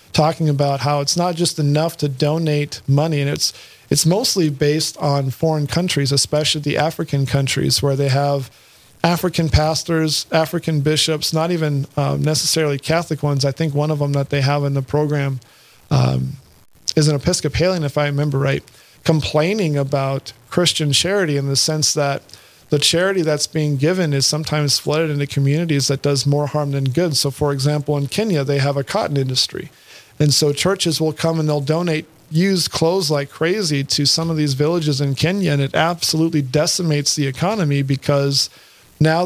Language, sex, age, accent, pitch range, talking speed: English, male, 40-59, American, 140-160 Hz, 175 wpm